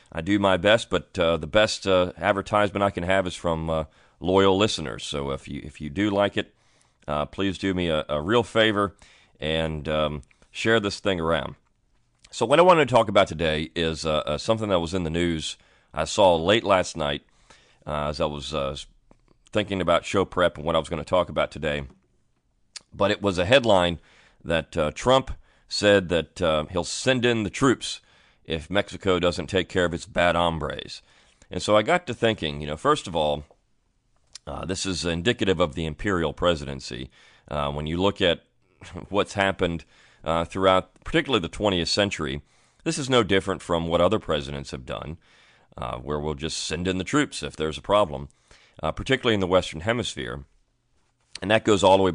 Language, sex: English, male